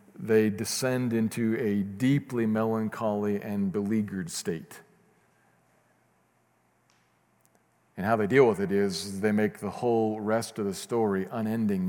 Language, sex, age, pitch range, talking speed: English, male, 50-69, 105-140 Hz, 125 wpm